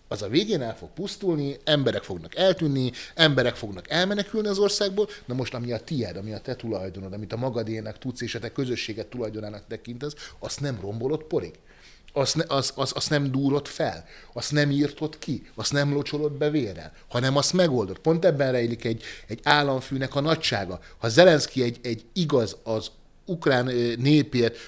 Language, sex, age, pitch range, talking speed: Hungarian, male, 30-49, 115-150 Hz, 180 wpm